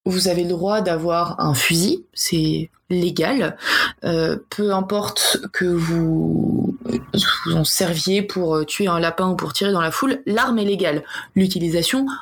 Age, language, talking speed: 20-39, French, 150 wpm